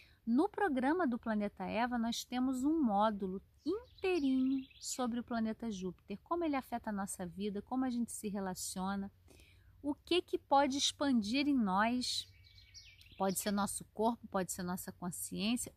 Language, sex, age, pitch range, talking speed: Portuguese, female, 30-49, 200-255 Hz, 150 wpm